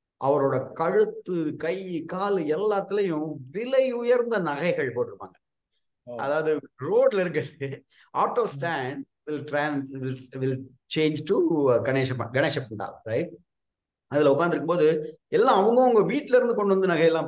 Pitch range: 130-185 Hz